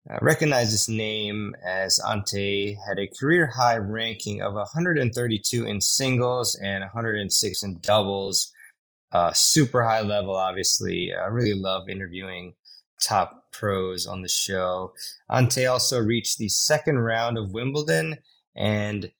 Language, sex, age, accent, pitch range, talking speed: English, male, 20-39, American, 95-115 Hz, 130 wpm